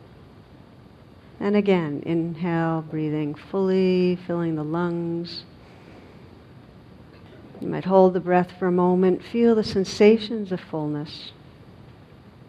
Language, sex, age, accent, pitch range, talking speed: English, female, 50-69, American, 160-185 Hz, 100 wpm